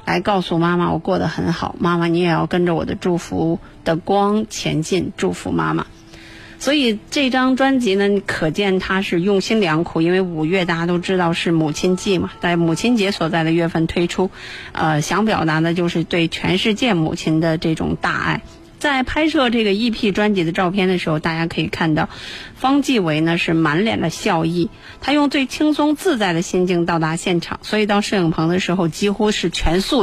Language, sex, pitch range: Chinese, female, 170-215 Hz